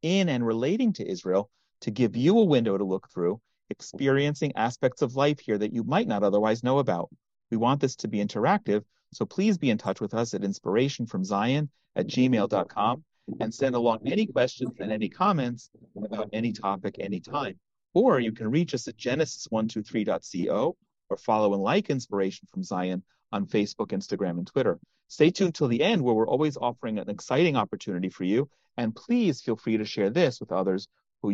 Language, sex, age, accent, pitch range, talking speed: English, male, 40-59, American, 110-150 Hz, 190 wpm